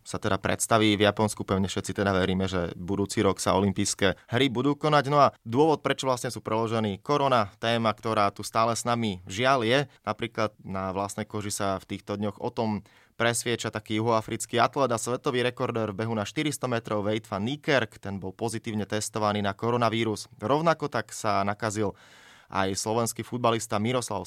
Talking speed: 175 wpm